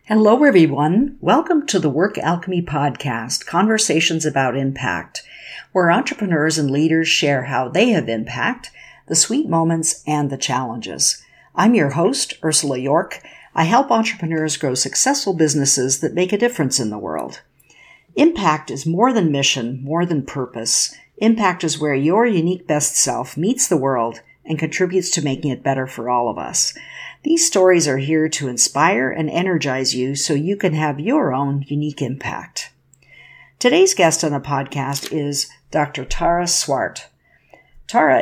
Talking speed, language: 155 wpm, English